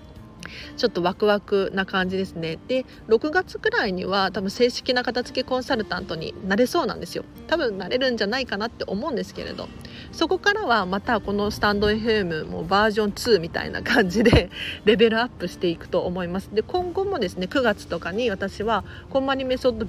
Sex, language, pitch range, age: female, Japanese, 190-265 Hz, 40-59